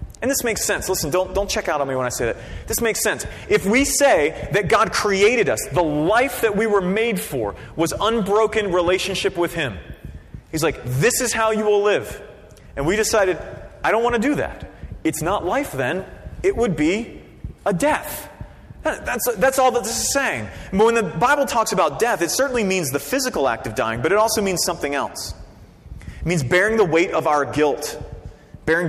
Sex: male